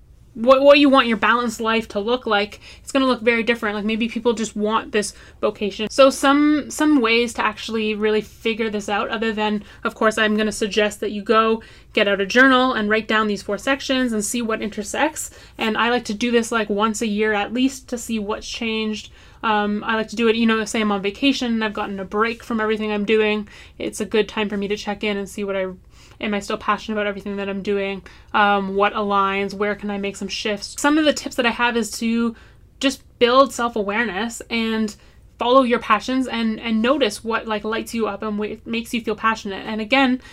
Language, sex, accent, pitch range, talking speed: English, female, American, 210-240 Hz, 235 wpm